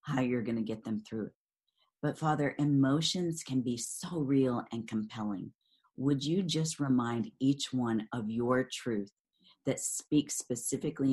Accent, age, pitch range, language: American, 40-59, 115-145 Hz, English